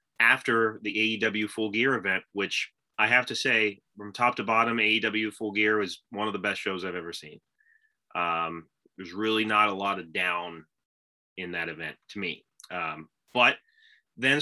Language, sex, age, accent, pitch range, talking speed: English, male, 30-49, American, 105-130 Hz, 180 wpm